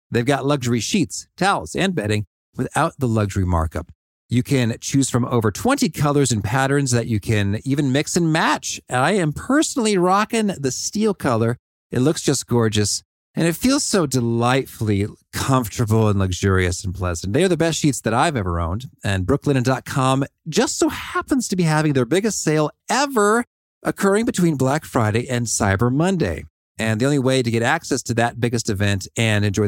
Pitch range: 100-145 Hz